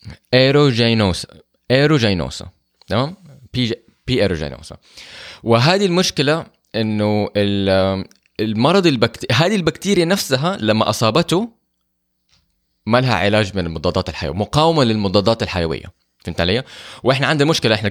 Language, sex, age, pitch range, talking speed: Arabic, male, 20-39, 90-130 Hz, 105 wpm